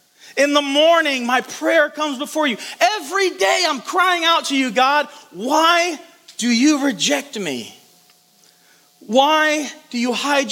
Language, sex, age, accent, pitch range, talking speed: English, male, 40-59, American, 210-270 Hz, 145 wpm